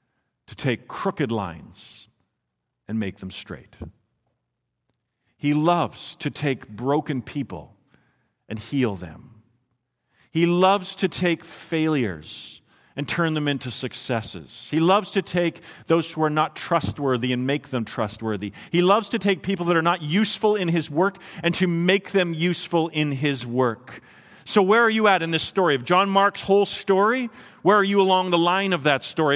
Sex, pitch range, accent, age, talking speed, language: male, 130-180 Hz, American, 40-59, 170 wpm, English